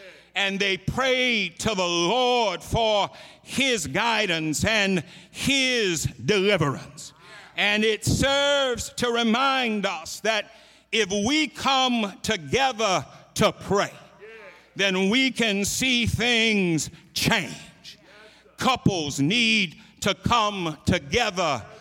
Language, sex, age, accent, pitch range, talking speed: English, male, 60-79, American, 190-240 Hz, 100 wpm